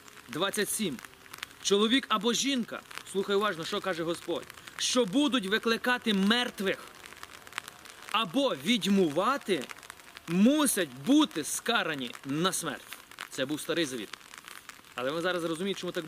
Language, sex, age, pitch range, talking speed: Ukrainian, male, 30-49, 180-220 Hz, 110 wpm